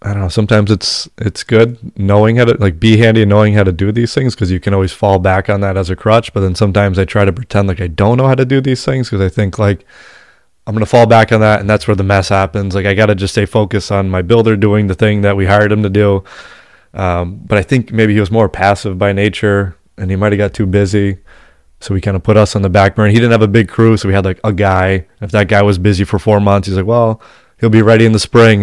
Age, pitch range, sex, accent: 20-39, 95-110 Hz, male, American